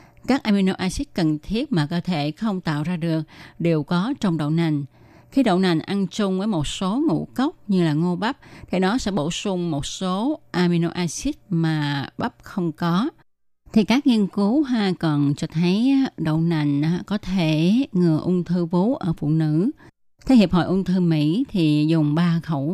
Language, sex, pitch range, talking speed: Vietnamese, female, 160-210 Hz, 195 wpm